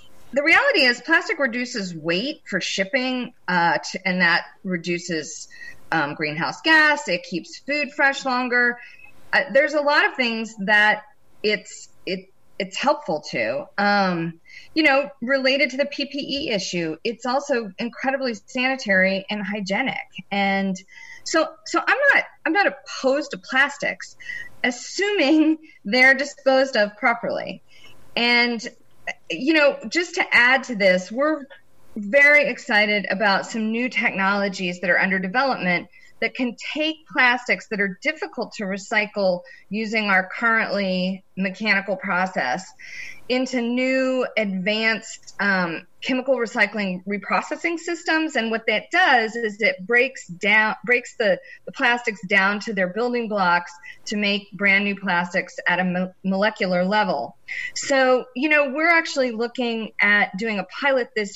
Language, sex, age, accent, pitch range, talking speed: English, female, 30-49, American, 195-275 Hz, 140 wpm